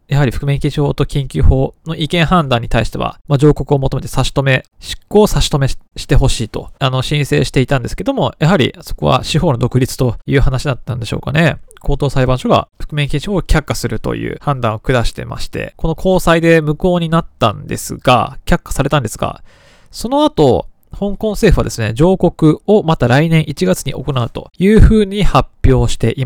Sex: male